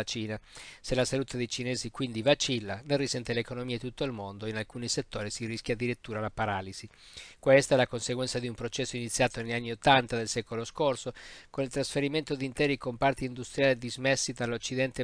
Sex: male